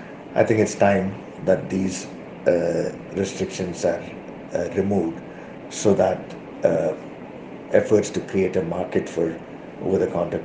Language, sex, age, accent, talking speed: English, male, 50-69, Indian, 120 wpm